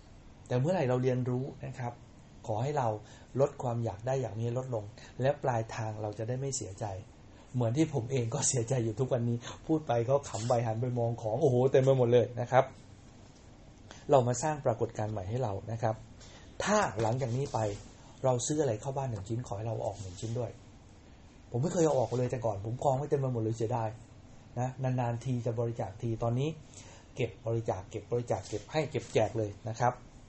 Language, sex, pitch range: English, male, 110-130 Hz